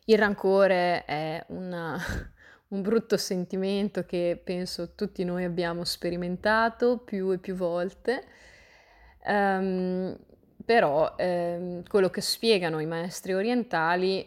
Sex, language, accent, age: female, Italian, native, 20-39